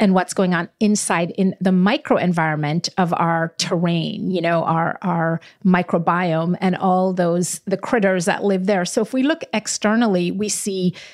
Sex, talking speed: female, 165 wpm